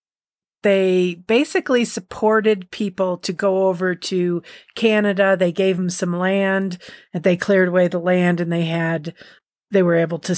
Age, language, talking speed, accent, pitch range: 40-59, English, 155 wpm, American, 165-190 Hz